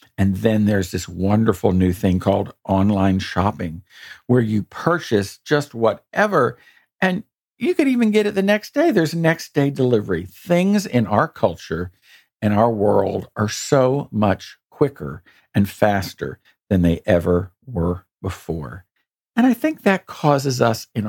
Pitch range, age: 95-145 Hz, 50-69